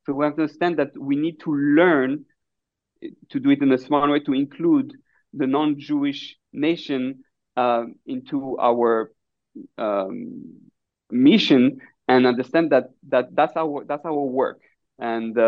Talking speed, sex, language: 150 wpm, male, English